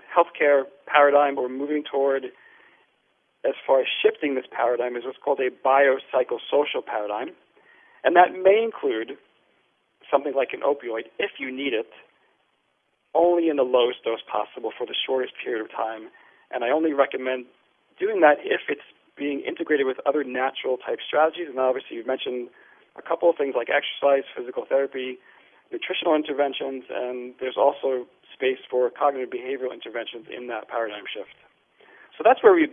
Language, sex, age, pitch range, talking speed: English, male, 40-59, 130-215 Hz, 160 wpm